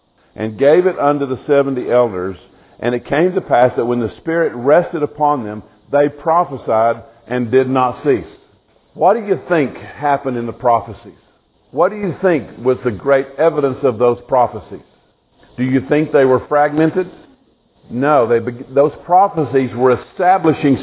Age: 50-69